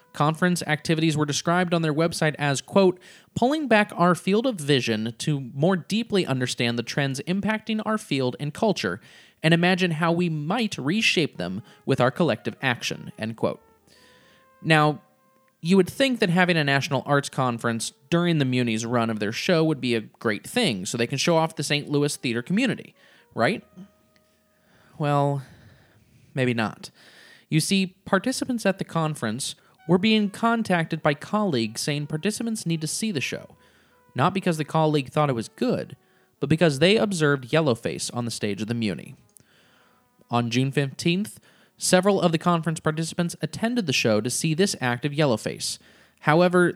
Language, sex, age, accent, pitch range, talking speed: English, male, 20-39, American, 130-185 Hz, 165 wpm